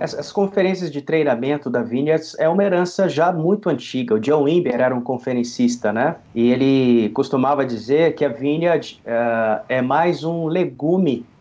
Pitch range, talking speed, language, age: 135-180 Hz, 165 wpm, Portuguese, 30-49